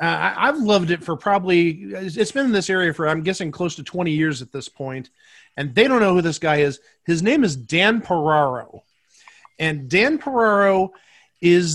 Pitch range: 160-220 Hz